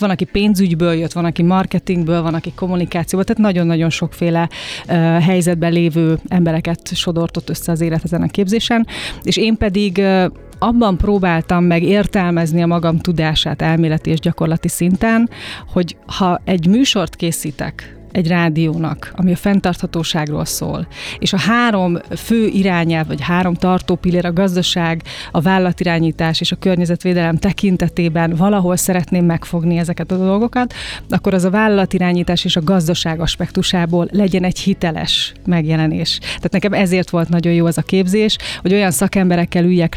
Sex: female